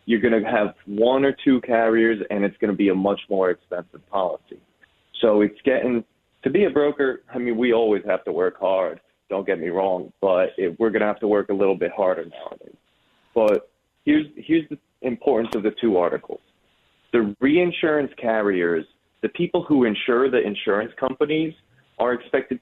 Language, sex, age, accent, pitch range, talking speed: English, male, 30-49, American, 105-130 Hz, 185 wpm